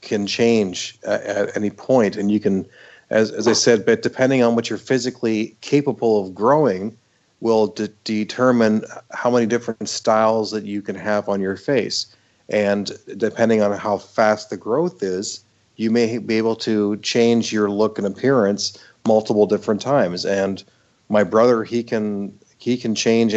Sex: male